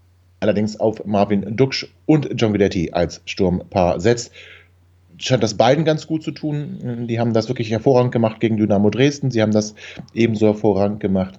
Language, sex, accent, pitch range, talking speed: German, male, German, 105-135 Hz, 175 wpm